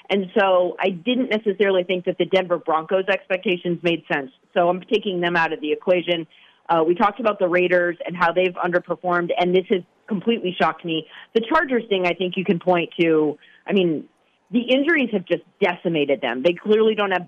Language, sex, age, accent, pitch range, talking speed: English, female, 30-49, American, 160-195 Hz, 200 wpm